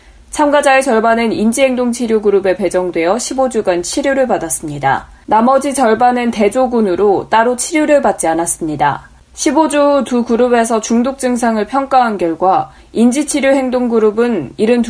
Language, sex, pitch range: Korean, female, 185-255 Hz